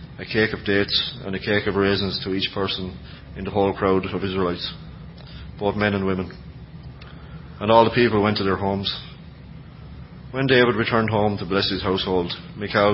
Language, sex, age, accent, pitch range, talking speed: English, male, 30-49, Irish, 95-110 Hz, 180 wpm